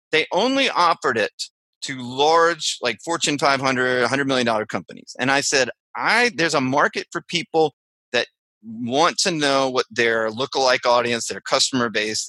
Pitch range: 120-155 Hz